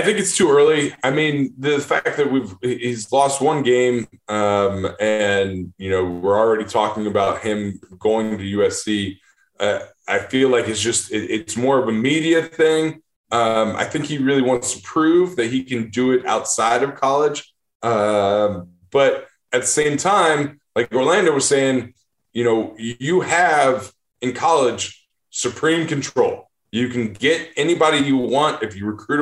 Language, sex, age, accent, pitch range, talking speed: English, male, 20-39, American, 105-145 Hz, 170 wpm